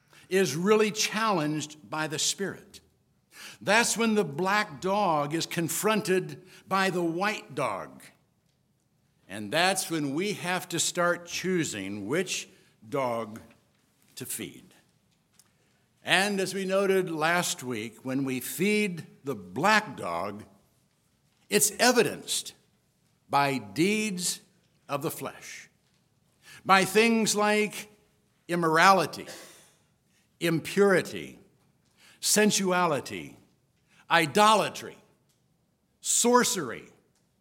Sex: male